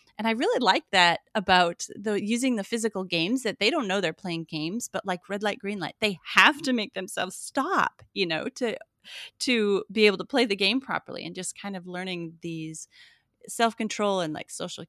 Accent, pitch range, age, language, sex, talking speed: American, 175-225 Hz, 30-49, English, female, 205 wpm